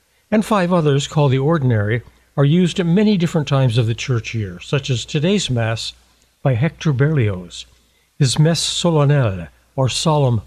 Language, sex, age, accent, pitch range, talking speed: English, male, 60-79, American, 115-160 Hz, 160 wpm